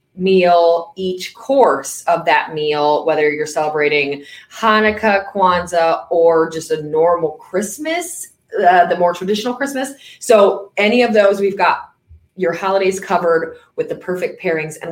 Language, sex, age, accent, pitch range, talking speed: English, female, 20-39, American, 155-210 Hz, 140 wpm